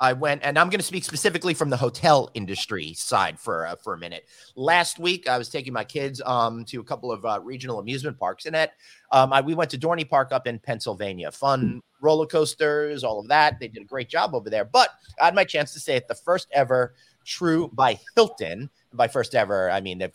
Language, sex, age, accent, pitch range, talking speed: English, male, 30-49, American, 135-180 Hz, 235 wpm